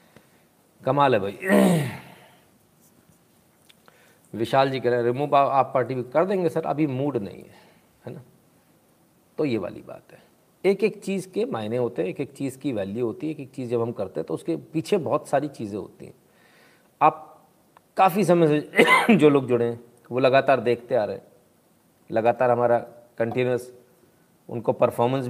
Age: 40-59